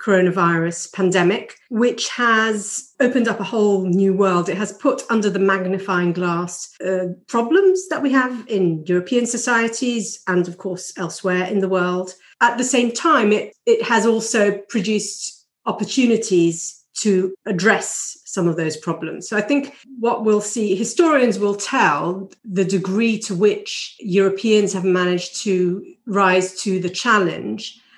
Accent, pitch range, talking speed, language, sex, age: British, 180-220 Hz, 150 wpm, English, female, 40-59